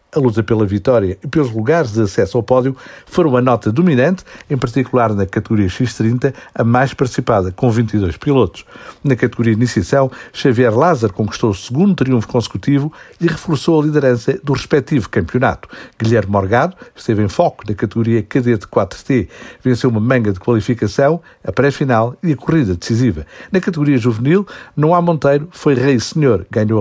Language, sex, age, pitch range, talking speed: Portuguese, male, 60-79, 115-145 Hz, 160 wpm